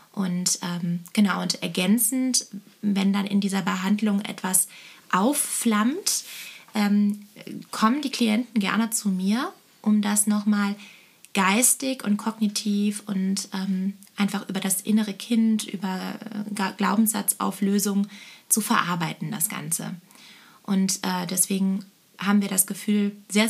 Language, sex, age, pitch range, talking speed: German, female, 20-39, 190-210 Hz, 120 wpm